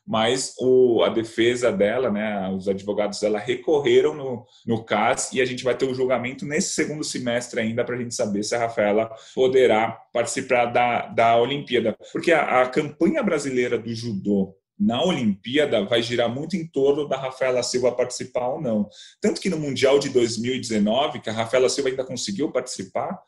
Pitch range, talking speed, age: 110-140 Hz, 175 wpm, 20-39